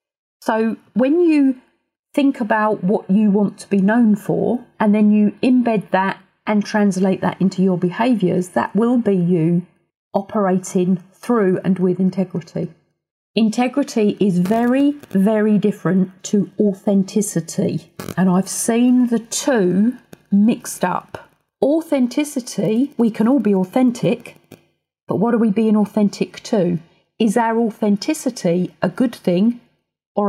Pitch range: 185-225 Hz